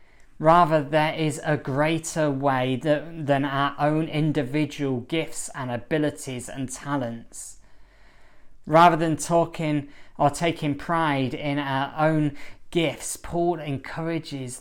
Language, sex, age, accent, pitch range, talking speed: English, male, 20-39, British, 135-160 Hz, 110 wpm